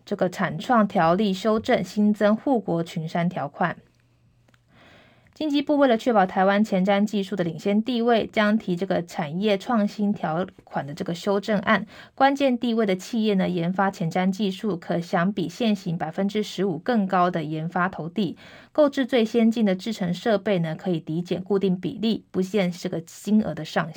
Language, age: Chinese, 20-39